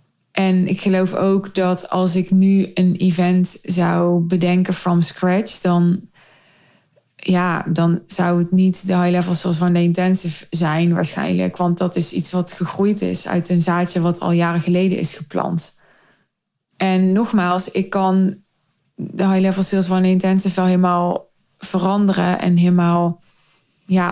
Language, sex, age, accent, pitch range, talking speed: Dutch, female, 20-39, Dutch, 175-195 Hz, 155 wpm